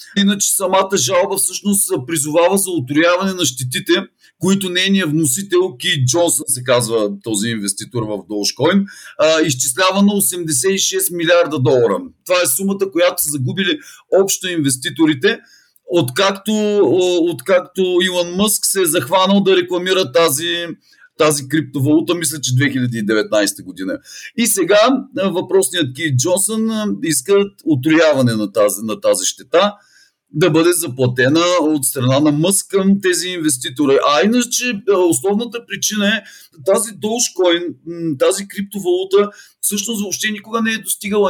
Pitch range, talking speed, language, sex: 155-200 Hz, 125 wpm, Bulgarian, male